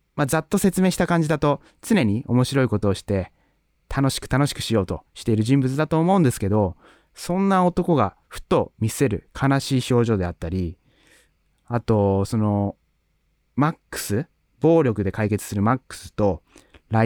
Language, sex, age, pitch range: Japanese, male, 30-49, 95-150 Hz